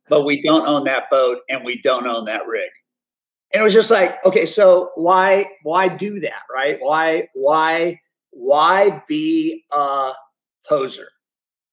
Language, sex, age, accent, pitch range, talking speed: English, male, 50-69, American, 135-210 Hz, 155 wpm